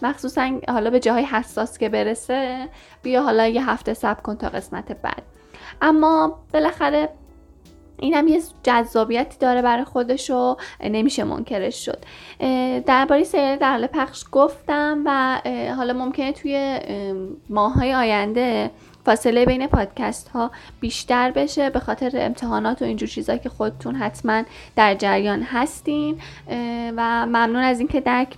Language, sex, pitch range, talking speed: Persian, female, 225-280 Hz, 135 wpm